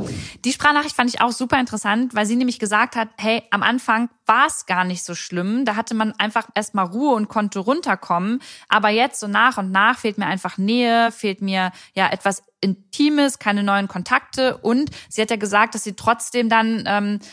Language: German